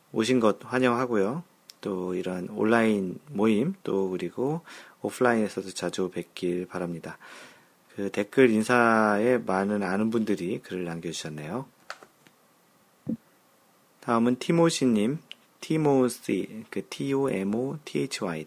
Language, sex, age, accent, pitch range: Korean, male, 40-59, native, 95-125 Hz